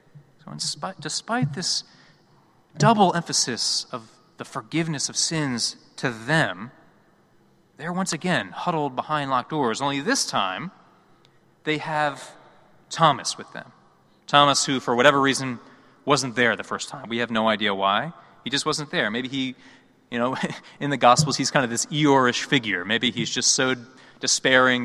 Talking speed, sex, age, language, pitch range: 155 wpm, male, 30-49, English, 125-175 Hz